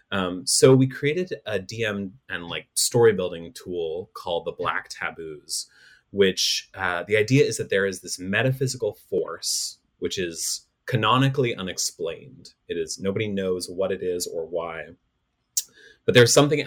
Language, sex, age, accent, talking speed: English, male, 30-49, American, 150 wpm